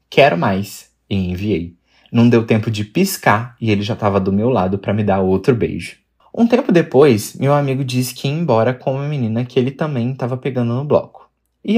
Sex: male